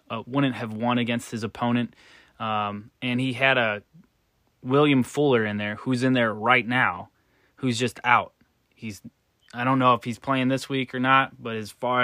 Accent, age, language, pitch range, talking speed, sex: American, 20-39, English, 115-130 Hz, 190 wpm, male